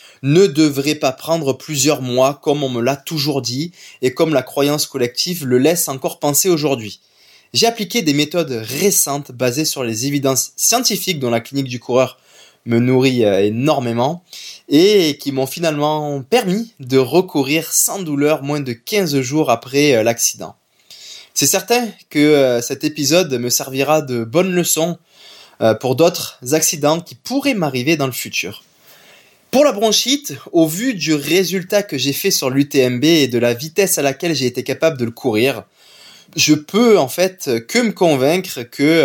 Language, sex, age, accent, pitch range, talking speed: French, male, 20-39, French, 130-185 Hz, 165 wpm